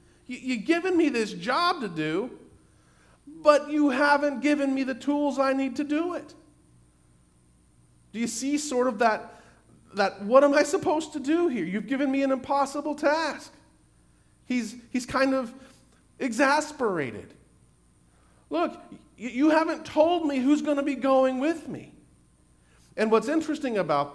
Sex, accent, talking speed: male, American, 150 wpm